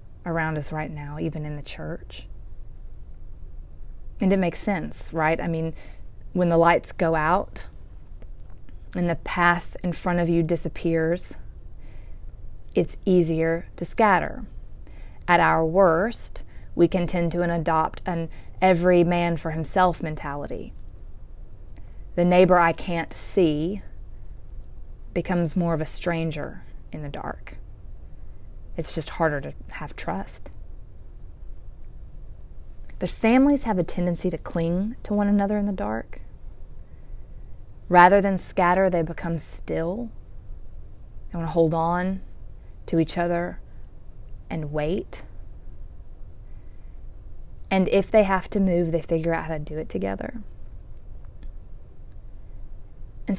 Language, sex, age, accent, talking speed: English, female, 30-49, American, 125 wpm